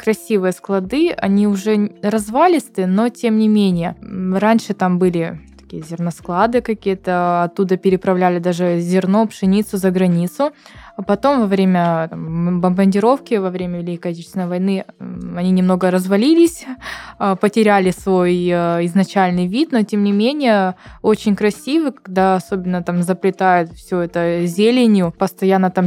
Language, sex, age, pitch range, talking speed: Russian, female, 20-39, 180-220 Hz, 130 wpm